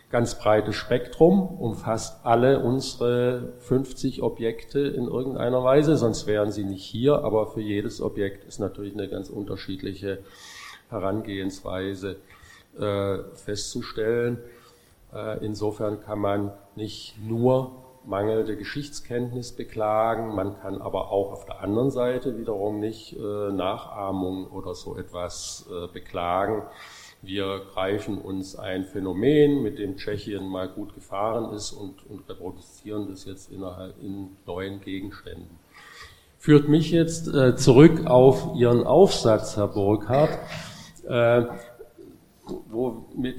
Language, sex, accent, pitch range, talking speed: German, male, German, 100-130 Hz, 115 wpm